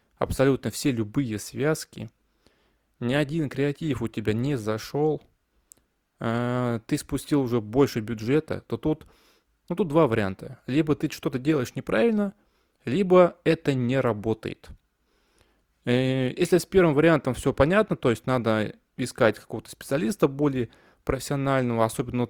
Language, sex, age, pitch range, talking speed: Russian, male, 20-39, 115-155 Hz, 125 wpm